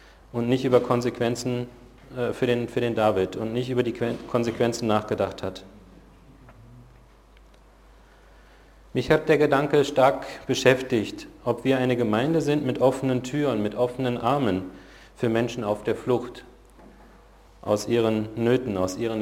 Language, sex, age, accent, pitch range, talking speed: German, male, 40-59, German, 110-130 Hz, 135 wpm